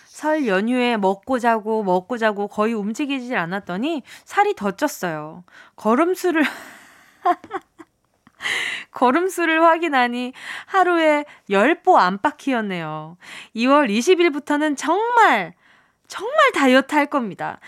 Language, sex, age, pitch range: Korean, female, 20-39, 225-350 Hz